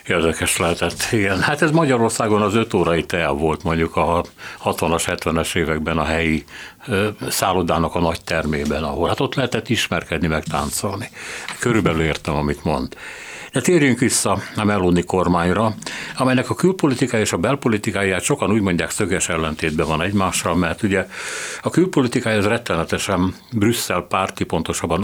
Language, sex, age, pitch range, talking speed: Hungarian, male, 60-79, 85-110 Hz, 145 wpm